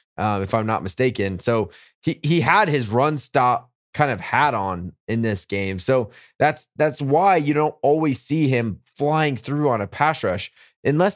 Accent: American